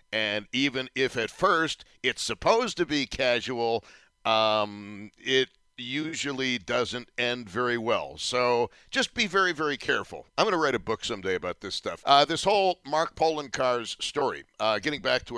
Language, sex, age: English, male, 60-79